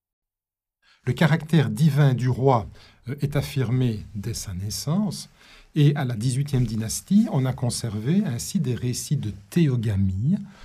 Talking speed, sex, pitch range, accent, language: 130 wpm, male, 115-150 Hz, French, French